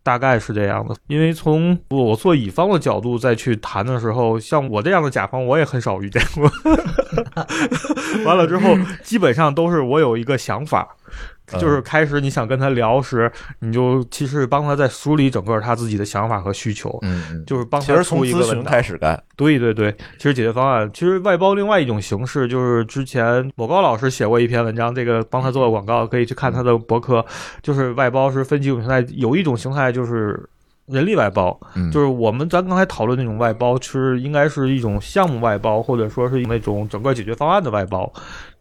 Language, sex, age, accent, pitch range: Chinese, male, 20-39, native, 115-145 Hz